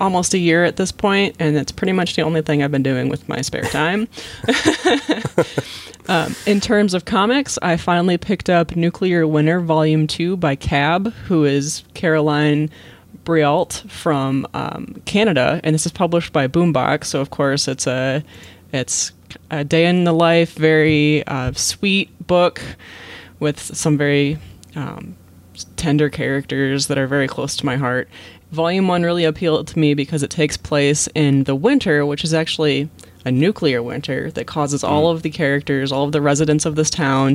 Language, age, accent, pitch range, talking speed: English, 20-39, American, 140-170 Hz, 170 wpm